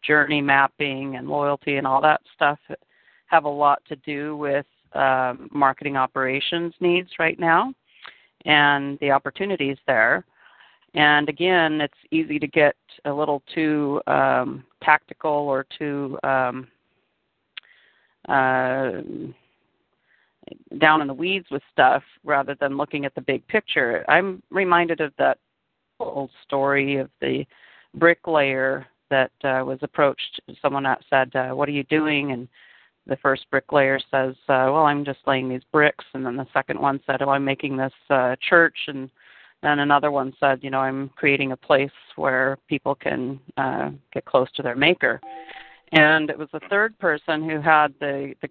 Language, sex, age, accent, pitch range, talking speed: English, female, 40-59, American, 135-155 Hz, 155 wpm